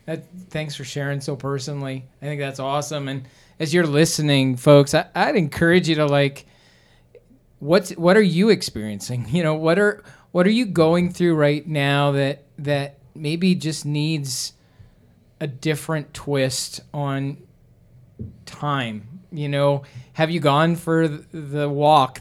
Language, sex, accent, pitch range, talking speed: English, male, American, 140-165 Hz, 150 wpm